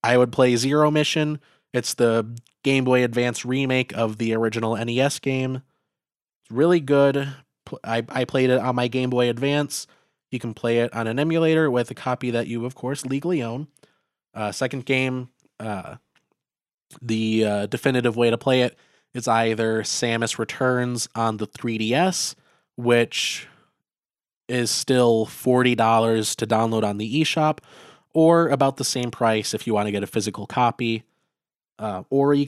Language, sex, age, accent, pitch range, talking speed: English, male, 20-39, American, 115-135 Hz, 160 wpm